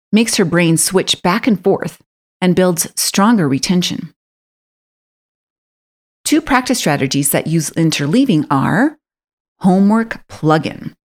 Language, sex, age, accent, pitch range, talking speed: English, female, 30-49, American, 160-225 Hz, 105 wpm